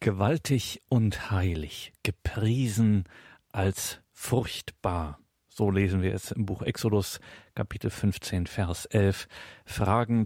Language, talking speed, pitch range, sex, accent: German, 105 wpm, 95-110 Hz, male, German